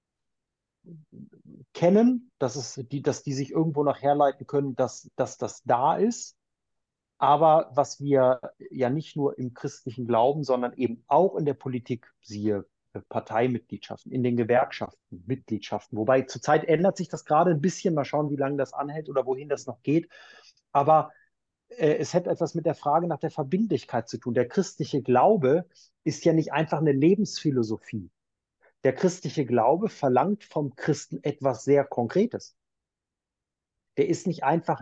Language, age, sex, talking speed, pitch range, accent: German, 30-49, male, 155 wpm, 125-165 Hz, German